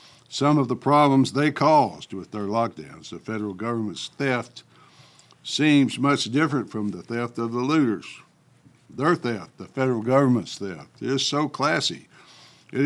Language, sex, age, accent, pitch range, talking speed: English, male, 60-79, American, 110-135 Hz, 150 wpm